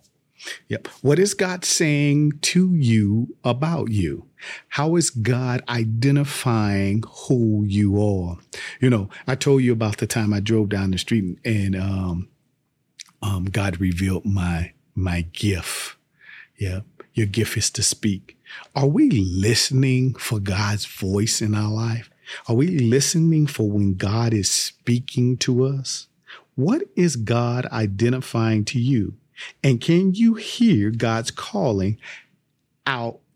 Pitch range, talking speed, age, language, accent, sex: 110-150 Hz, 135 wpm, 40-59, English, American, male